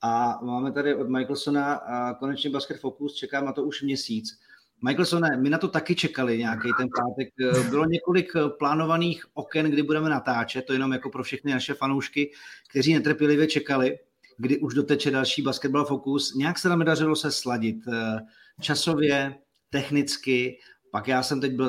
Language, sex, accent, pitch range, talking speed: Czech, male, native, 125-150 Hz, 165 wpm